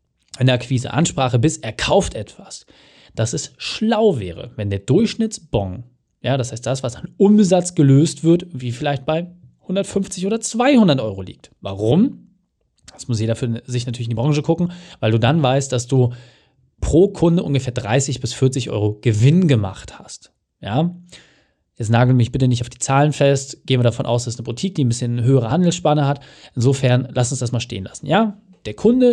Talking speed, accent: 190 wpm, German